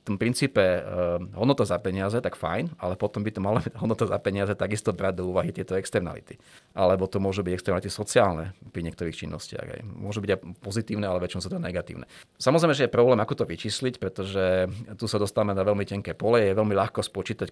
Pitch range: 95-115 Hz